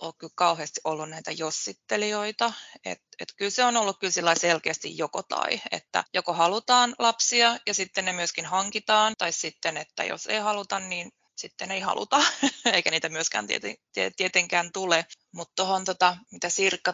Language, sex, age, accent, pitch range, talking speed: Finnish, female, 20-39, native, 175-225 Hz, 160 wpm